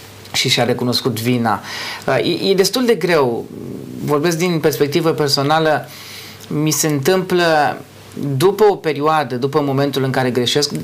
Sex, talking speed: male, 125 wpm